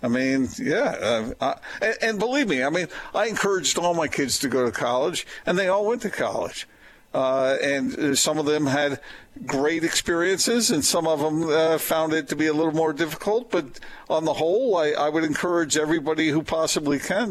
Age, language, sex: 50-69, English, male